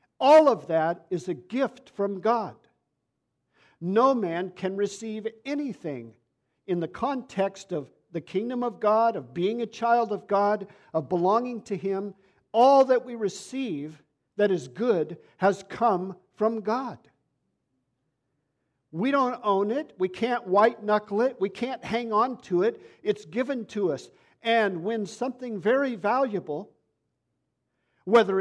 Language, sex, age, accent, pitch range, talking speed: English, male, 50-69, American, 170-235 Hz, 140 wpm